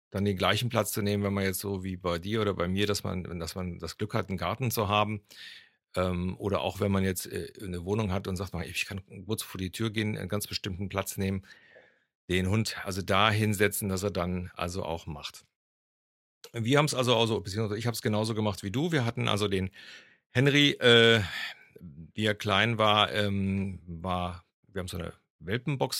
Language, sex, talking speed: German, male, 210 wpm